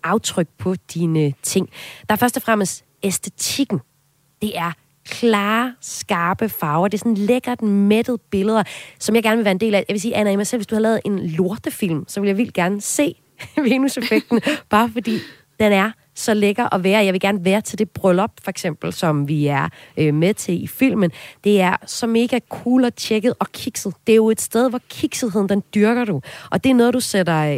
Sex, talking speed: female, 215 wpm